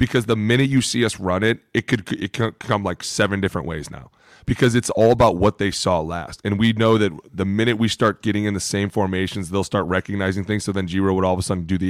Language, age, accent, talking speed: English, 30-49, American, 265 wpm